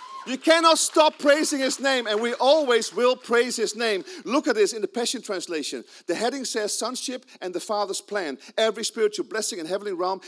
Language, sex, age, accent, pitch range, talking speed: English, male, 40-59, Dutch, 210-295 Hz, 200 wpm